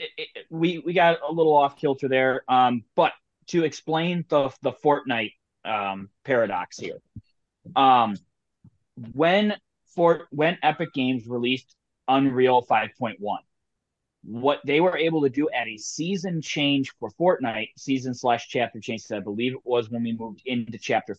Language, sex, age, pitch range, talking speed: English, male, 30-49, 115-145 Hz, 155 wpm